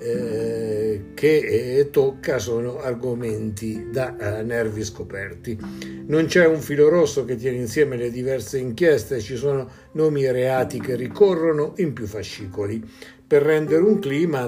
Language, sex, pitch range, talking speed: Italian, male, 110-145 Hz, 145 wpm